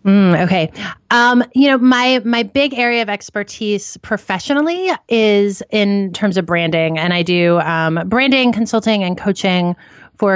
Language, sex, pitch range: English, female, 165-220 Hz